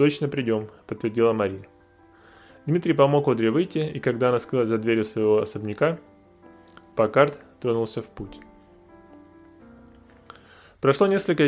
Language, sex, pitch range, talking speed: Russian, male, 105-145 Hz, 120 wpm